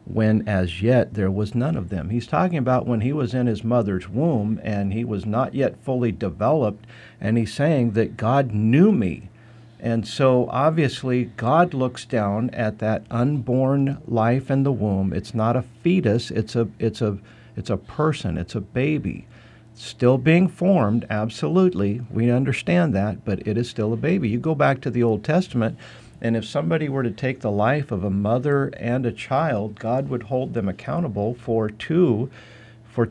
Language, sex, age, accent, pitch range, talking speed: English, male, 50-69, American, 110-135 Hz, 185 wpm